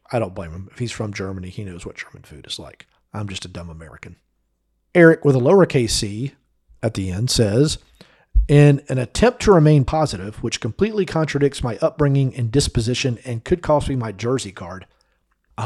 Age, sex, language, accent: 40-59, male, English, American